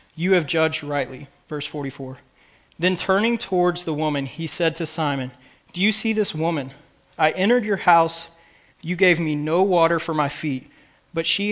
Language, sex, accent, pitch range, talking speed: English, male, American, 150-180 Hz, 175 wpm